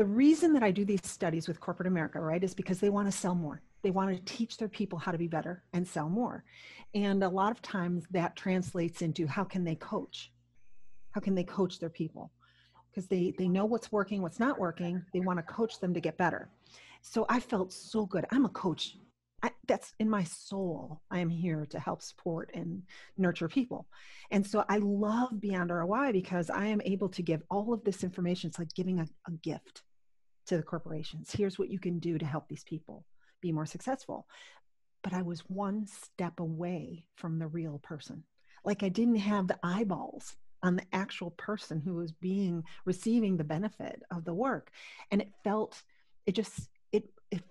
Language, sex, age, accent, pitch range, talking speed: English, female, 40-59, American, 170-205 Hz, 205 wpm